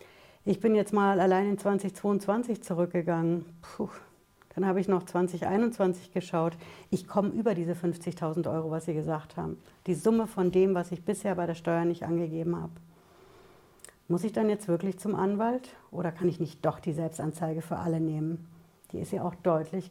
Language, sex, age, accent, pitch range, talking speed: German, female, 60-79, German, 160-185 Hz, 180 wpm